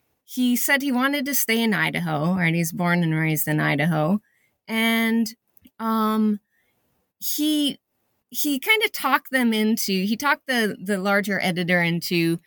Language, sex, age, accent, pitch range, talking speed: English, female, 30-49, American, 170-235 Hz, 150 wpm